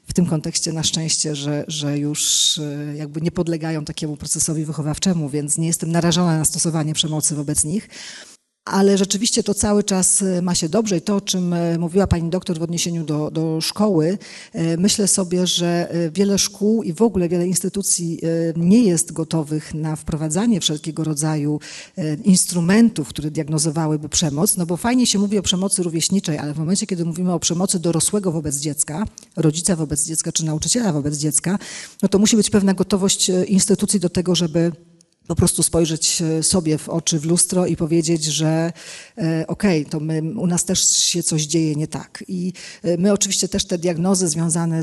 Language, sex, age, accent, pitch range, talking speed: Polish, female, 40-59, native, 160-190 Hz, 175 wpm